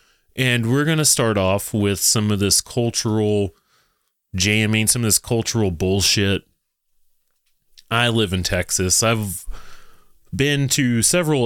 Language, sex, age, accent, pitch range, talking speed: English, male, 30-49, American, 95-115 Hz, 130 wpm